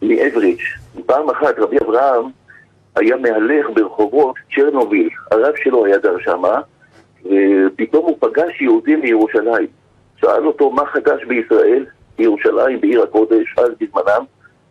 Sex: male